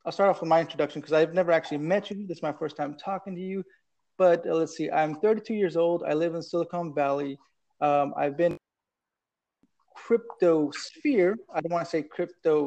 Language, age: English, 30-49